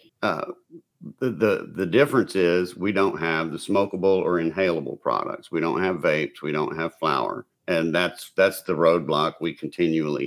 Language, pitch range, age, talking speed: English, 80-115 Hz, 50-69, 170 wpm